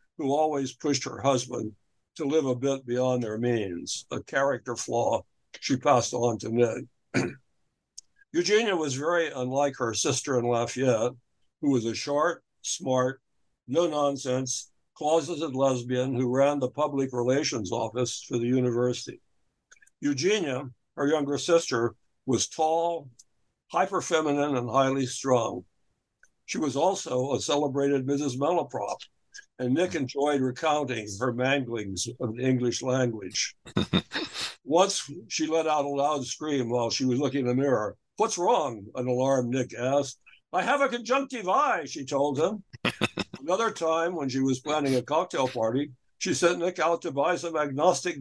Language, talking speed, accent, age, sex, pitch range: English, 145 wpm, American, 60-79, male, 125-150 Hz